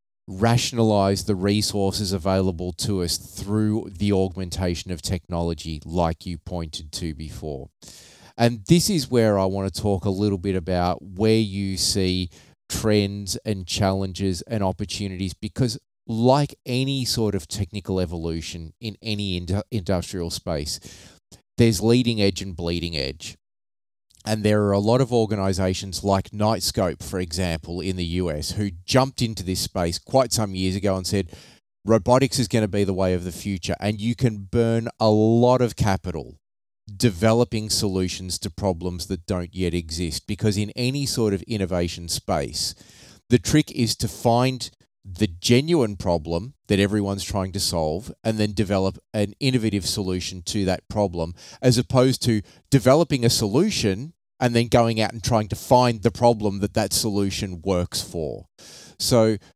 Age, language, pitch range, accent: 30-49, English, 90-115 Hz, Australian